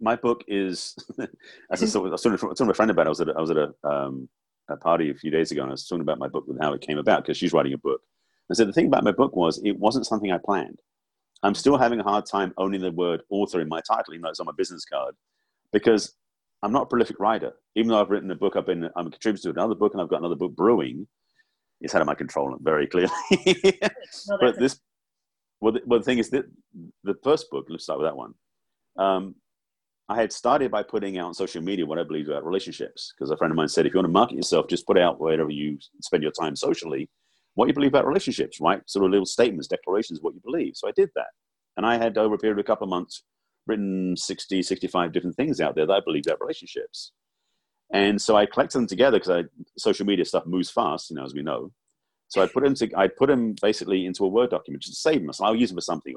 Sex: male